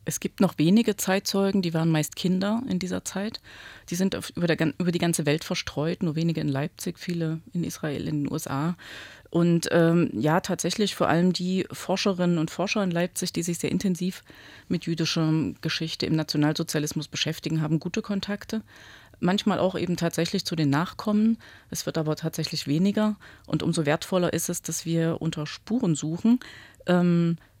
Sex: female